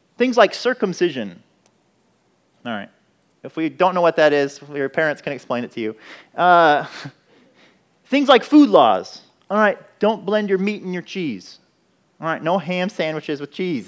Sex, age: male, 30-49